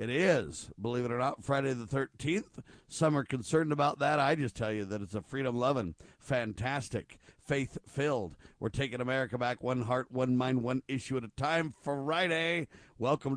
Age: 50-69